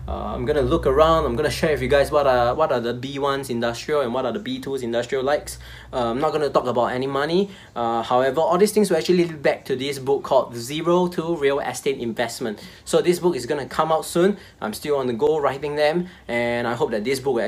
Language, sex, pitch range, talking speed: English, male, 140-185 Hz, 265 wpm